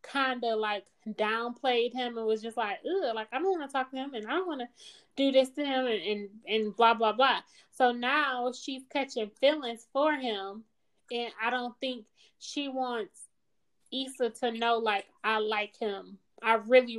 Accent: American